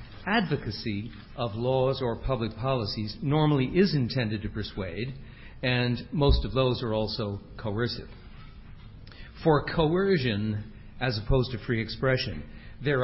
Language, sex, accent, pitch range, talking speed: English, male, American, 110-140 Hz, 120 wpm